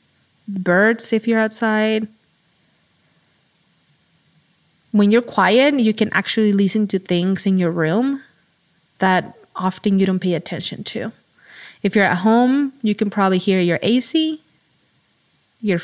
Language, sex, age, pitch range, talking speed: English, female, 20-39, 185-230 Hz, 130 wpm